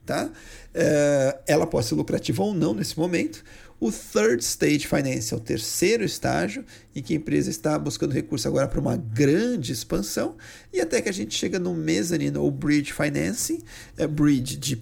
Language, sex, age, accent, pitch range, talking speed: Portuguese, male, 40-59, Brazilian, 120-165 Hz, 180 wpm